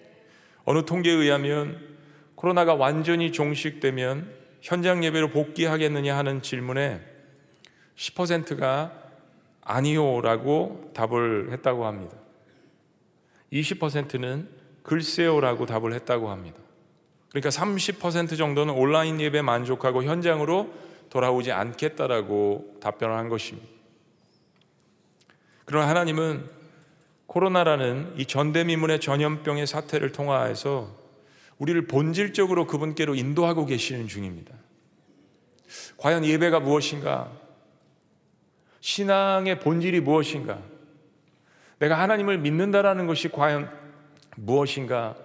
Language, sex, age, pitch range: Korean, male, 40-59, 135-160 Hz